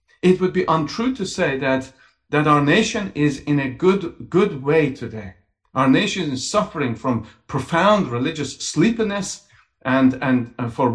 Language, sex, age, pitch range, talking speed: English, male, 50-69, 140-210 Hz, 155 wpm